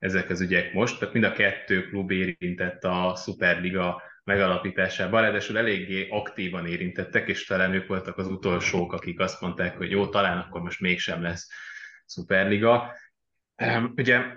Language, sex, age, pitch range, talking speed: Hungarian, male, 20-39, 90-115 Hz, 145 wpm